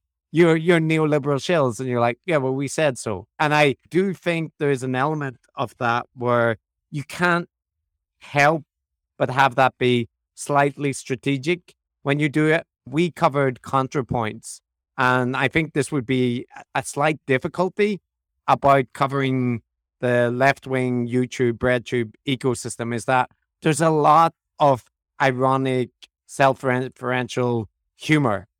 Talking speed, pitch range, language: 135 wpm, 120-145 Hz, English